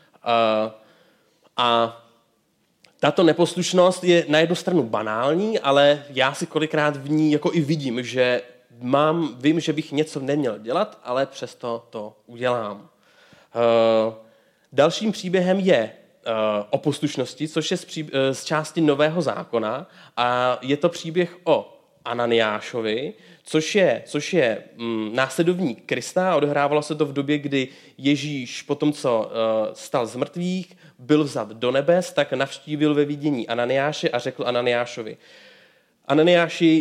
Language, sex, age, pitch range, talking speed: Czech, male, 20-39, 125-165 Hz, 140 wpm